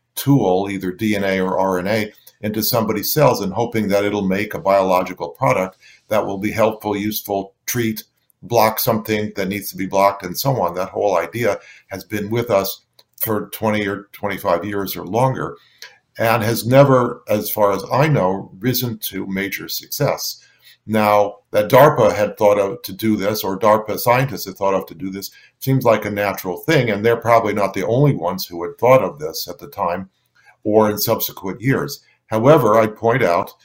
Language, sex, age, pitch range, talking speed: English, male, 50-69, 100-115 Hz, 185 wpm